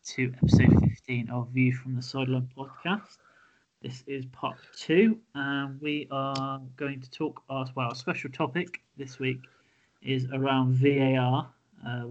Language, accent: English, British